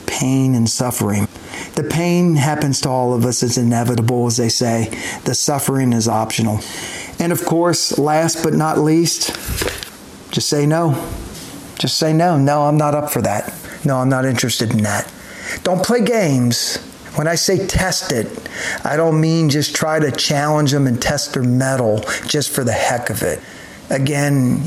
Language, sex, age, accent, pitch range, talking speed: English, male, 50-69, American, 125-155 Hz, 175 wpm